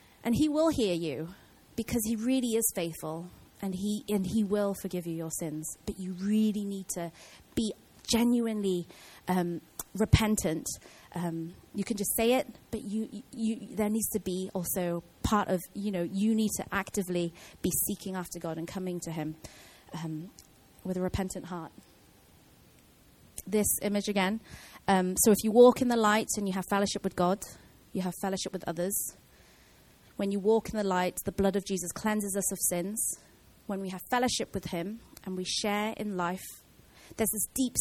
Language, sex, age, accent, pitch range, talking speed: English, female, 30-49, British, 180-215 Hz, 180 wpm